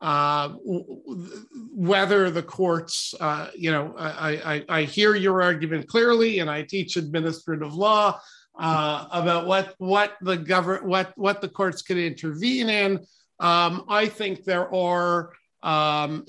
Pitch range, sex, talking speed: 165-200 Hz, male, 140 wpm